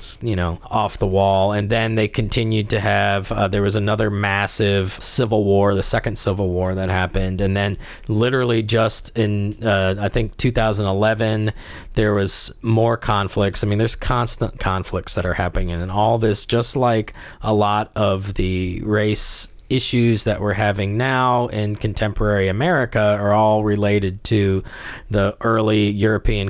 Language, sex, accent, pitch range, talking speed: English, male, American, 95-110 Hz, 160 wpm